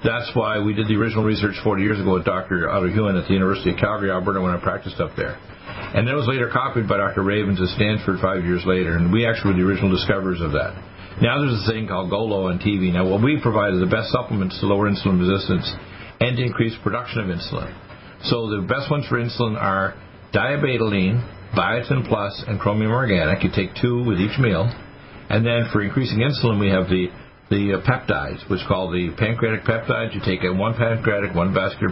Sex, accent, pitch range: male, American, 95-115 Hz